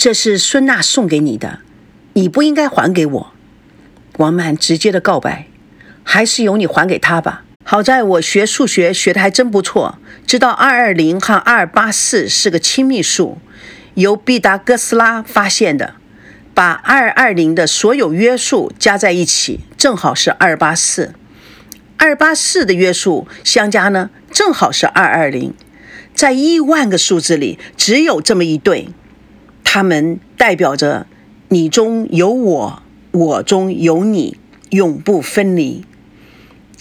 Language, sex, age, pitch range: Chinese, female, 50-69, 170-230 Hz